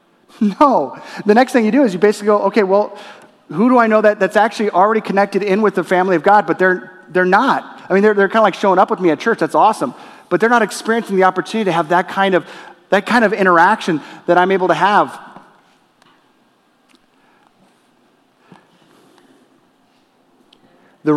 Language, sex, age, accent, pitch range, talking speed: English, male, 30-49, American, 145-195 Hz, 190 wpm